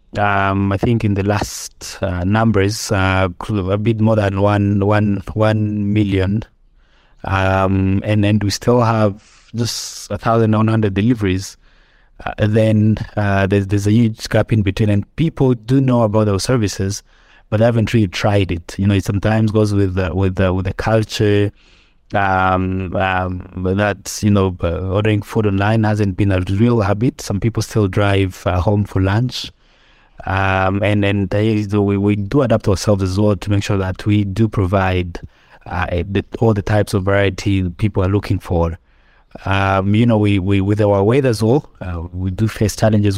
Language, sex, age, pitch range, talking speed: English, male, 20-39, 95-110 Hz, 175 wpm